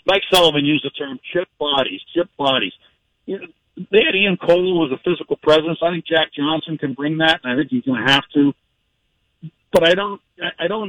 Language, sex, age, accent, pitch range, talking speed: English, male, 50-69, American, 135-165 Hz, 215 wpm